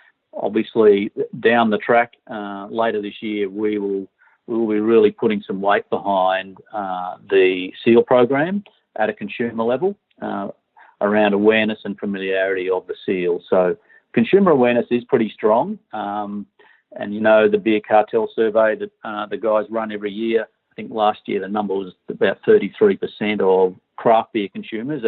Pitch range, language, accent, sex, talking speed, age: 100-125 Hz, English, Australian, male, 165 wpm, 50-69